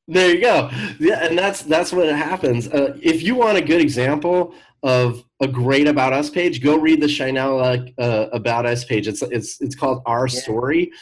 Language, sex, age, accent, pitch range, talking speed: English, male, 30-49, American, 115-145 Hz, 195 wpm